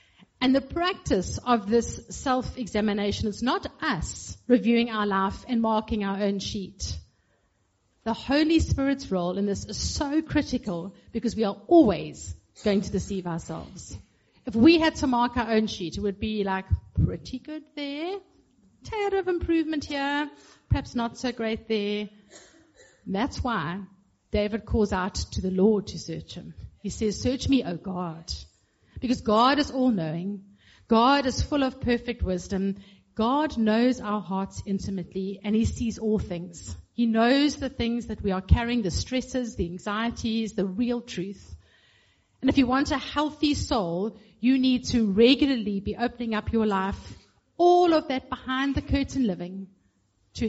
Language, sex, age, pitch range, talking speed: English, female, 50-69, 195-255 Hz, 155 wpm